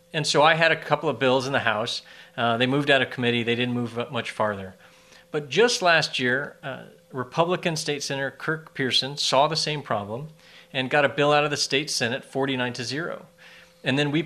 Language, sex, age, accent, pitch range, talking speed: English, male, 40-59, American, 115-160 Hz, 215 wpm